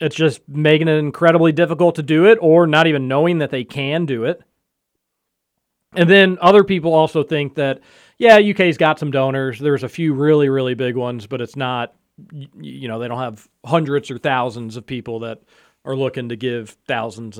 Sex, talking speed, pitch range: male, 195 wpm, 130-170 Hz